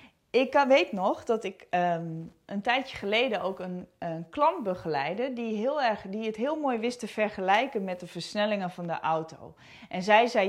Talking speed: 190 wpm